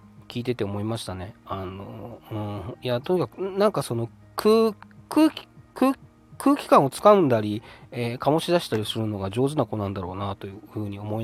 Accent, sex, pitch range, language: native, male, 105-145 Hz, Japanese